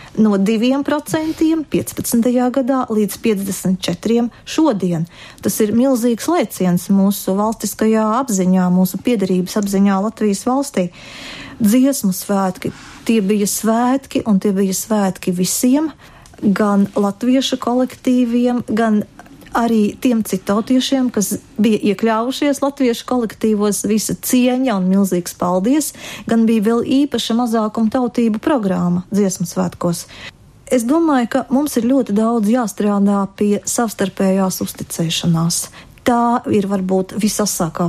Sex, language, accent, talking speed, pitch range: female, Russian, native, 110 wpm, 195-245 Hz